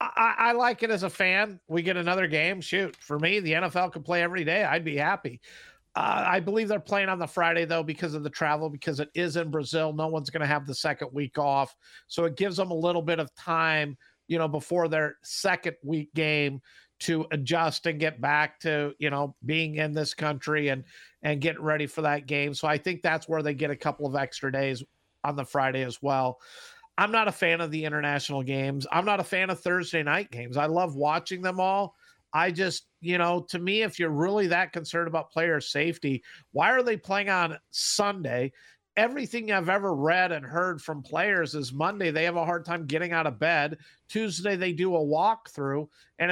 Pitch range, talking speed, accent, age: 150-185 Hz, 220 wpm, American, 50-69